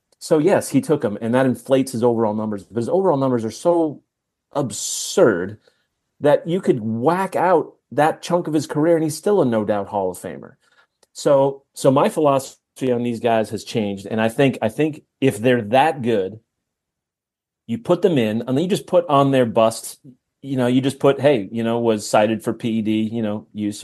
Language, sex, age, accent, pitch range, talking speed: English, male, 30-49, American, 110-135 Hz, 205 wpm